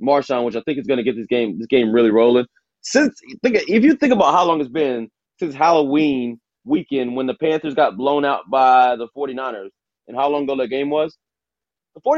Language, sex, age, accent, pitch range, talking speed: English, male, 20-39, American, 120-170 Hz, 215 wpm